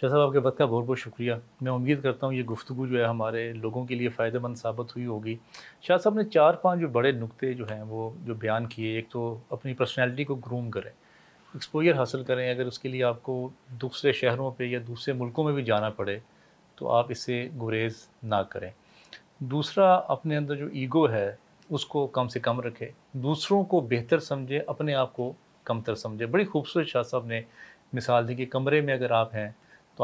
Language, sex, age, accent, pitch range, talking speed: English, male, 30-49, Indian, 115-140 Hz, 165 wpm